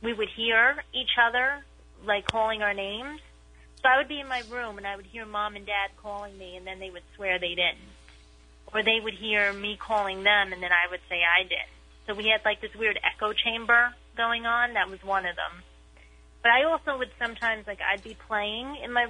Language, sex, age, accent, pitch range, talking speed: English, female, 30-49, American, 175-220 Hz, 225 wpm